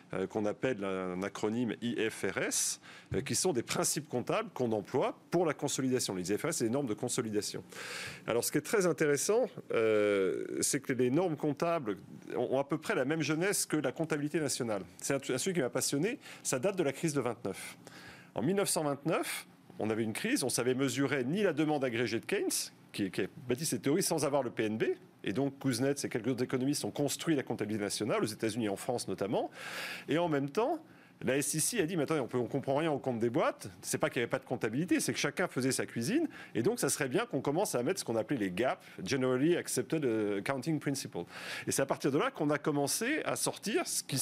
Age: 40-59